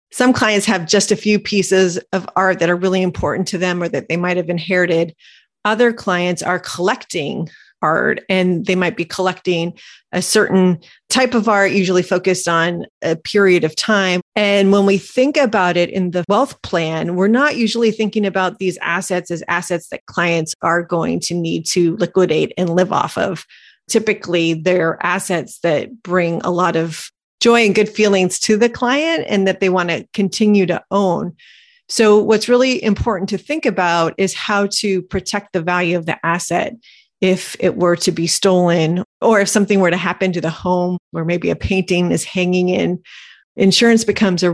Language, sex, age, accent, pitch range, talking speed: English, female, 30-49, American, 175-205 Hz, 185 wpm